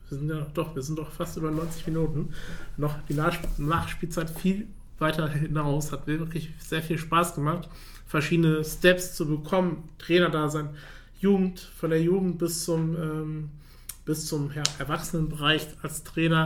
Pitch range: 145-165 Hz